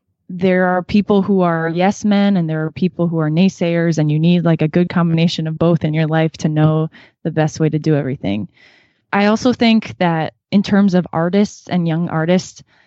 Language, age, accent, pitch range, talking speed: English, 20-39, American, 160-195 Hz, 210 wpm